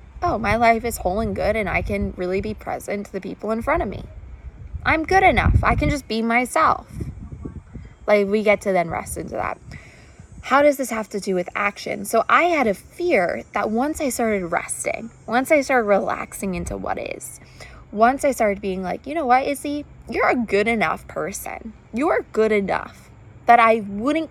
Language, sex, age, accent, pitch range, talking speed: English, female, 20-39, American, 185-250 Hz, 200 wpm